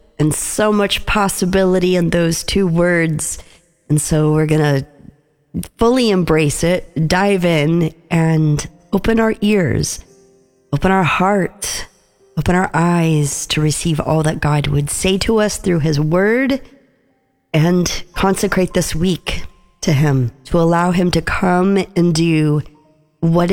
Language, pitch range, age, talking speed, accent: English, 155-195 Hz, 40-59, 140 wpm, American